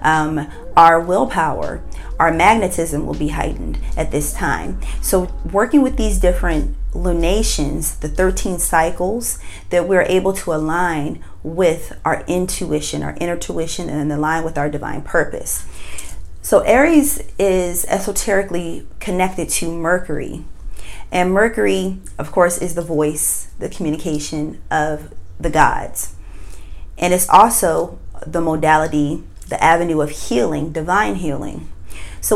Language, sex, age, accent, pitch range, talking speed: English, female, 30-49, American, 150-185 Hz, 125 wpm